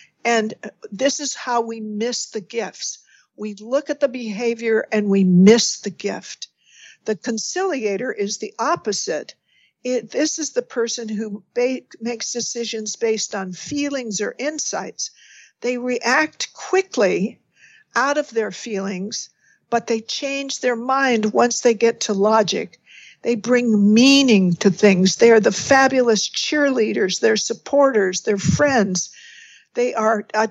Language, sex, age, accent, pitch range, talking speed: English, female, 60-79, American, 210-245 Hz, 135 wpm